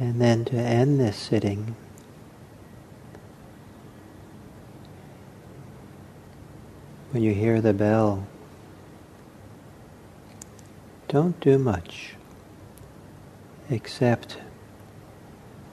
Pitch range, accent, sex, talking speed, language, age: 105-120 Hz, American, male, 55 wpm, English, 50-69